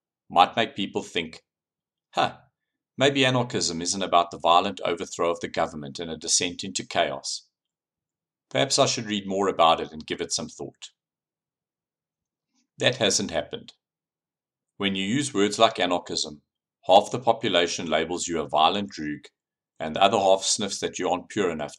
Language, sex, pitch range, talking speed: English, male, 85-115 Hz, 160 wpm